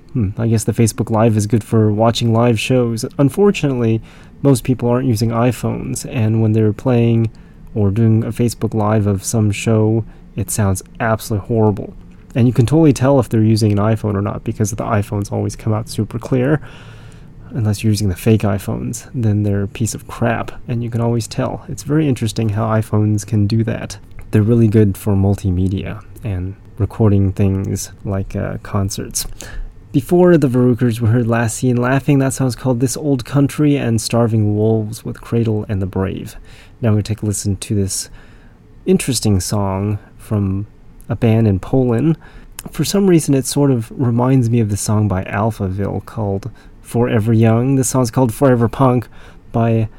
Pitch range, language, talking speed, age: 105-125 Hz, English, 180 wpm, 20-39